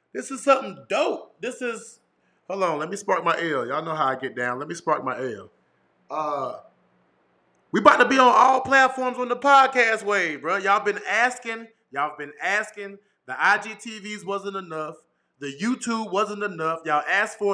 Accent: American